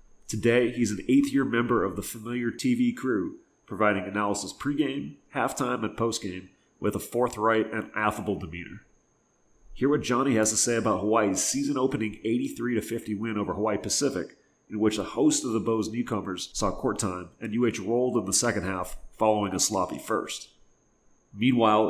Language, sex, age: English, male, 30-49